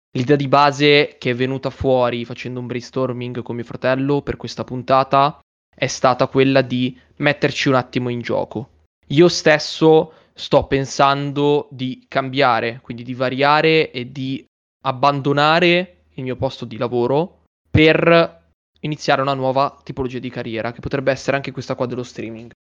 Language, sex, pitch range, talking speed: Italian, male, 125-140 Hz, 150 wpm